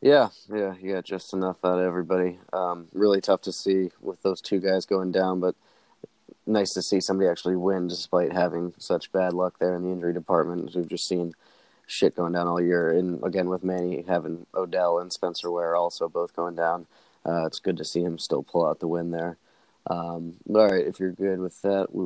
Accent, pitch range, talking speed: American, 90-95 Hz, 210 wpm